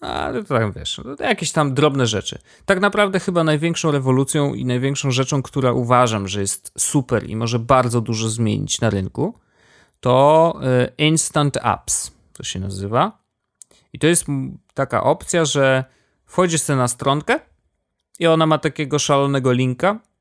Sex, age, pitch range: male, 30-49, 110-145 Hz